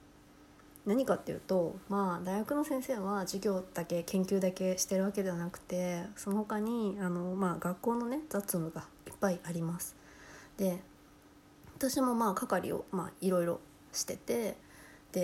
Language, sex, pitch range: Japanese, female, 175-220 Hz